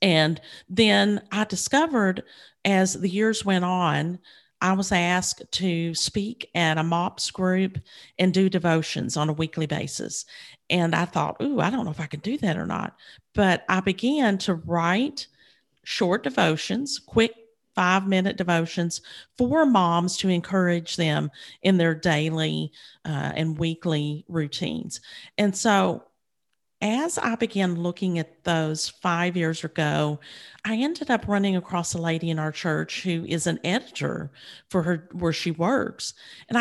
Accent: American